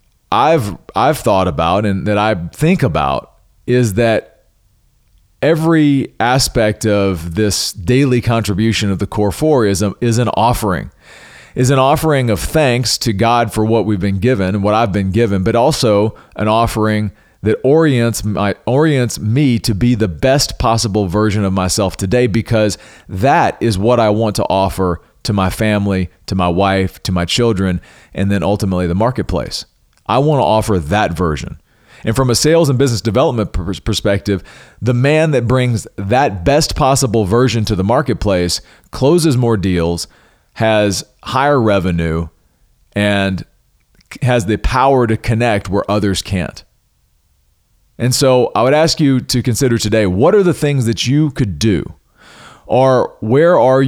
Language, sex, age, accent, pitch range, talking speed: English, male, 40-59, American, 95-125 Hz, 160 wpm